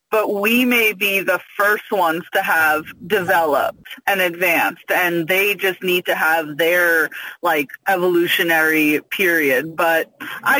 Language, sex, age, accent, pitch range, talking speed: English, female, 20-39, American, 180-225 Hz, 135 wpm